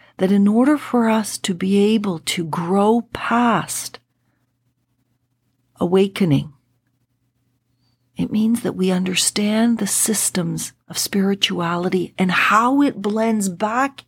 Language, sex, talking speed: English, female, 110 wpm